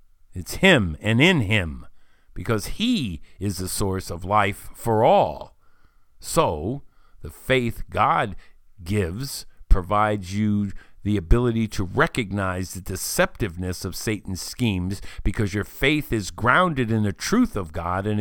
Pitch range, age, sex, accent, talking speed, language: 85-105 Hz, 50-69, male, American, 135 wpm, English